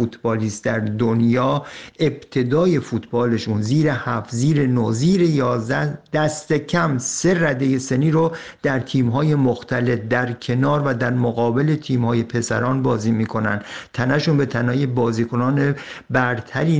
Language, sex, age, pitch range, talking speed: Persian, male, 50-69, 125-155 Hz, 115 wpm